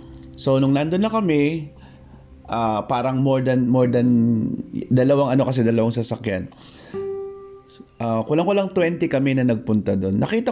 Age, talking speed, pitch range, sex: 30-49, 145 wpm, 105-150 Hz, male